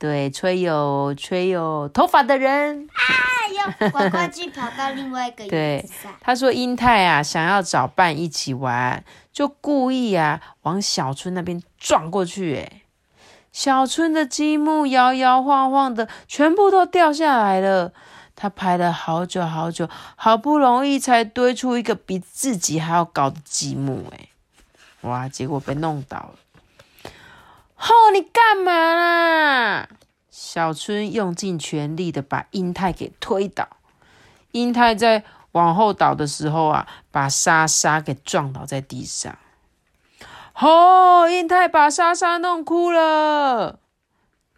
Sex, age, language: female, 30-49, Chinese